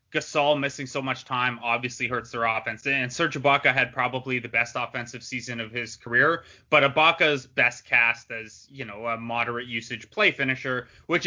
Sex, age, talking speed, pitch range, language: male, 20-39, 185 wpm, 125-140 Hz, English